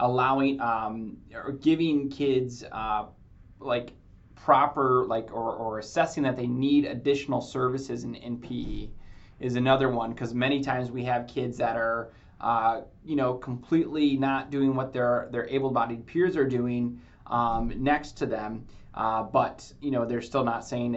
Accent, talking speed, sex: American, 160 wpm, male